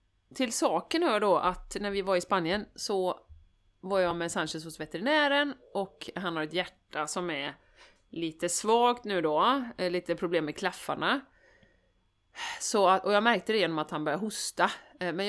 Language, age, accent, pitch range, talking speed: Swedish, 30-49, native, 175-245 Hz, 175 wpm